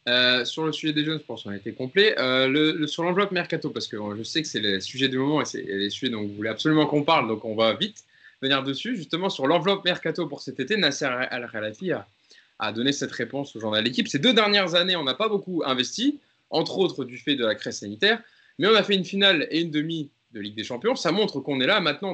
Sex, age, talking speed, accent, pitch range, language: male, 20-39, 270 wpm, French, 125-180 Hz, French